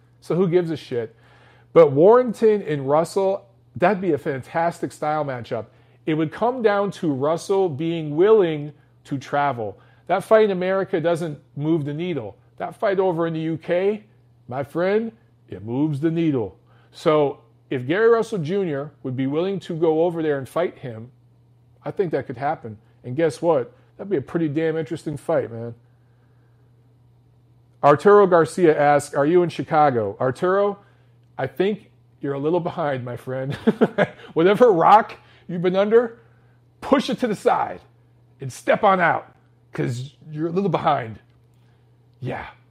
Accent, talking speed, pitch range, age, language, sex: American, 155 wpm, 120-170 Hz, 40-59, English, male